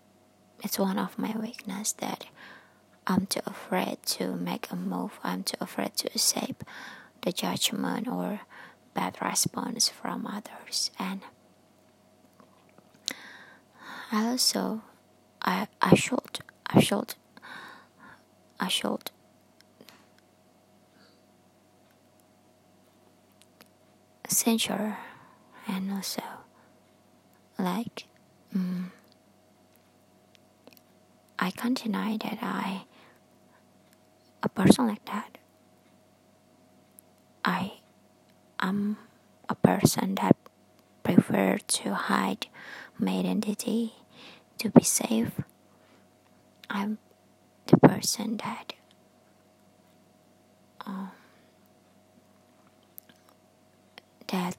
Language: English